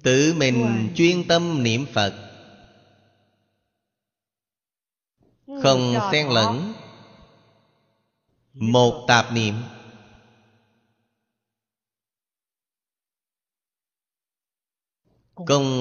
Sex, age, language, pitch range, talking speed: male, 30-49, Vietnamese, 110-135 Hz, 50 wpm